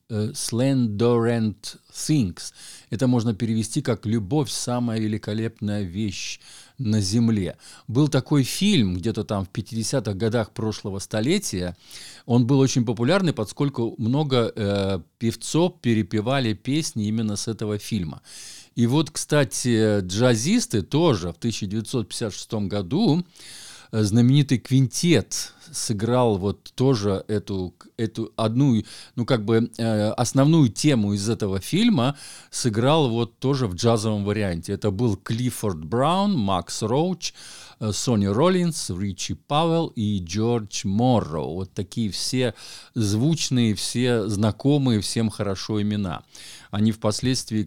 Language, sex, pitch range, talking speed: Russian, male, 105-130 Hz, 115 wpm